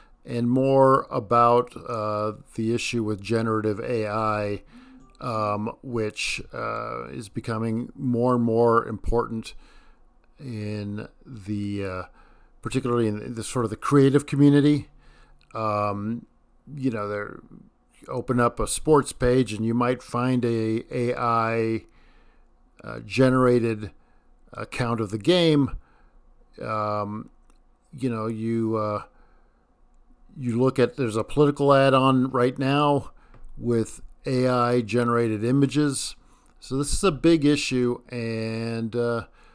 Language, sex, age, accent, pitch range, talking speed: English, male, 50-69, American, 110-135 Hz, 115 wpm